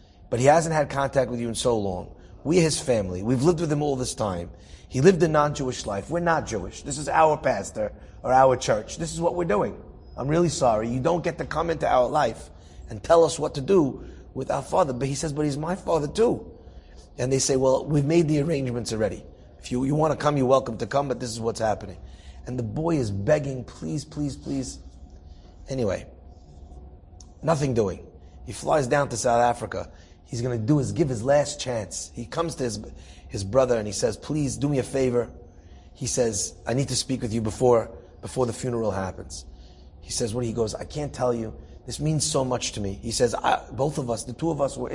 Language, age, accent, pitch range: English, 30-49, American, 95-150 Hz